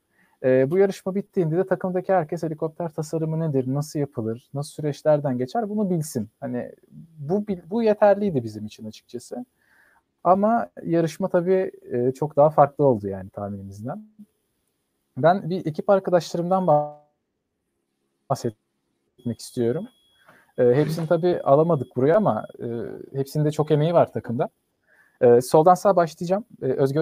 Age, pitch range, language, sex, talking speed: 40-59, 145-200 Hz, Turkish, male, 130 wpm